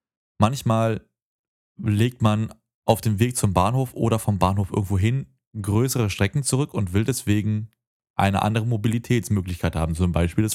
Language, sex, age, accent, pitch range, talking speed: German, male, 30-49, German, 95-130 Hz, 150 wpm